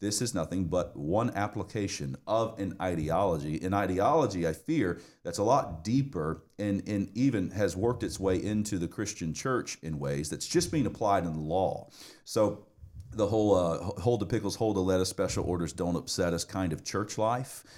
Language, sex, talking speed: English, male, 190 wpm